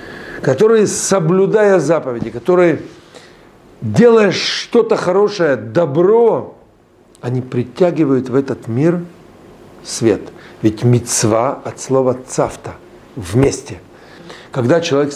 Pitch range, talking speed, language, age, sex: 115-165 Hz, 95 wpm, Russian, 50-69, male